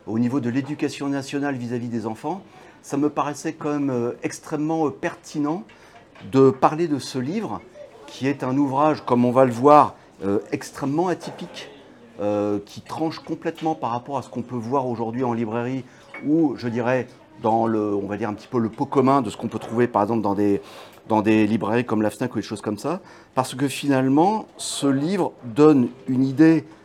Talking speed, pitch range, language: 190 wpm, 115-145 Hz, French